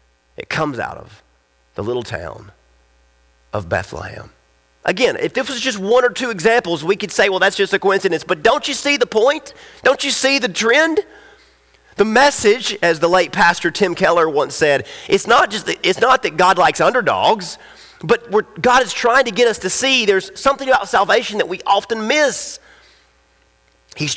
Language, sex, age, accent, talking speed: English, male, 30-49, American, 190 wpm